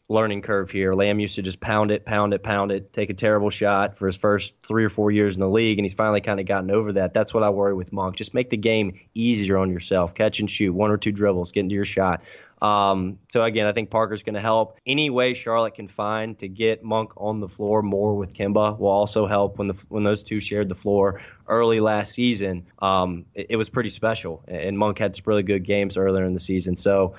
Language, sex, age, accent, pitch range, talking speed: English, male, 20-39, American, 95-110 Hz, 250 wpm